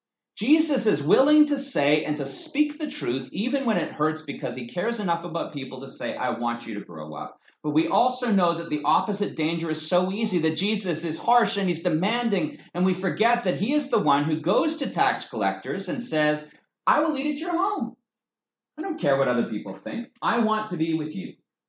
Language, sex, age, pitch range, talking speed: English, male, 40-59, 170-240 Hz, 220 wpm